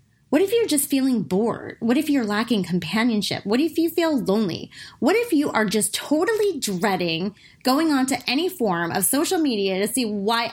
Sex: female